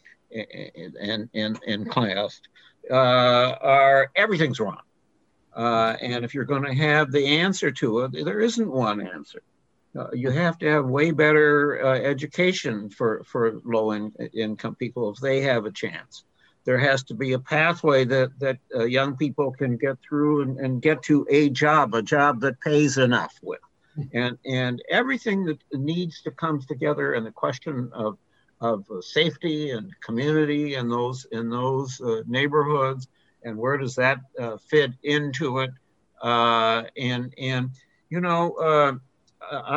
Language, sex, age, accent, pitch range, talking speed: English, male, 60-79, American, 120-150 Hz, 155 wpm